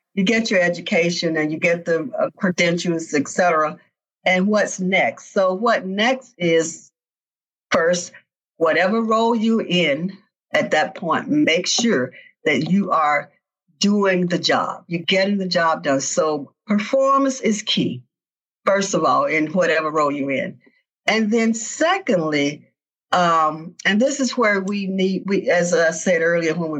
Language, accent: English, American